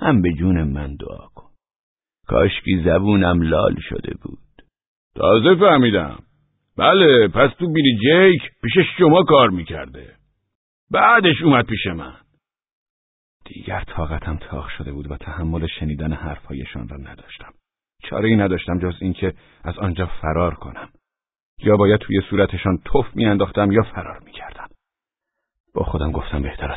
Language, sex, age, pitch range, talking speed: Persian, male, 50-69, 75-100 Hz, 130 wpm